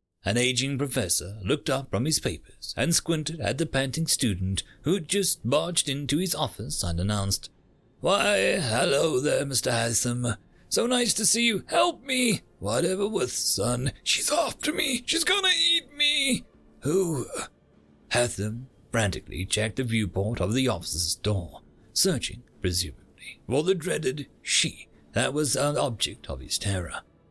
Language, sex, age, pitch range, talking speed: English, male, 40-59, 95-150 Hz, 145 wpm